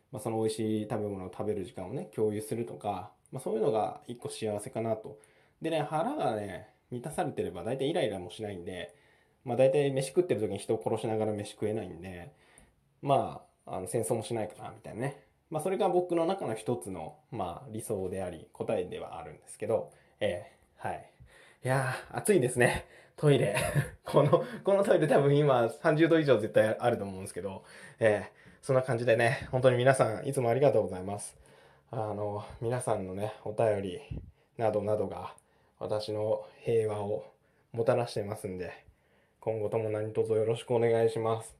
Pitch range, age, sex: 110-155 Hz, 20-39, male